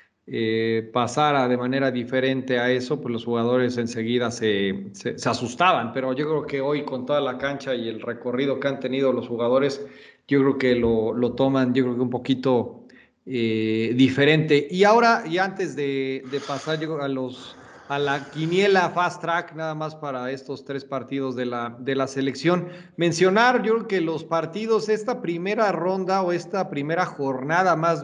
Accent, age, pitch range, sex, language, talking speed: Mexican, 40-59, 130-175 Hz, male, Spanish, 180 wpm